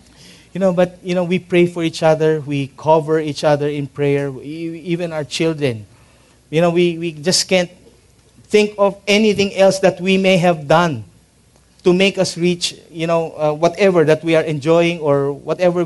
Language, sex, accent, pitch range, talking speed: English, male, Filipino, 125-160 Hz, 180 wpm